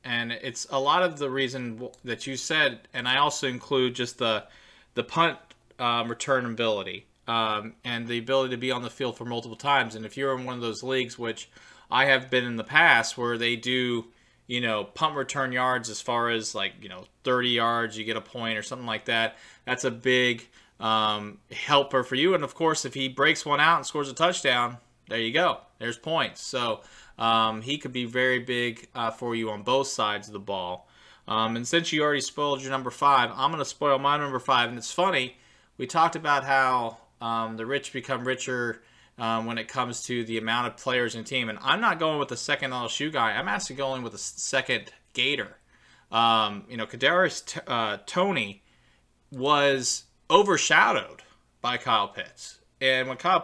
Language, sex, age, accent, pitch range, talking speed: English, male, 30-49, American, 115-135 Hz, 205 wpm